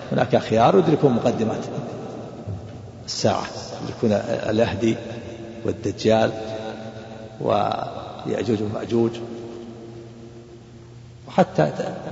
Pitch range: 115-135 Hz